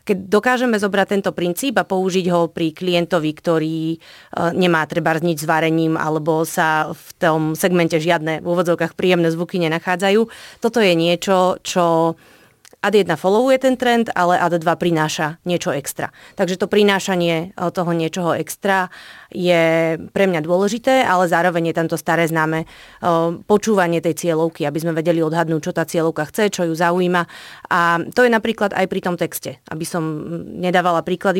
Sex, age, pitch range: female, 30-49, 165-190 Hz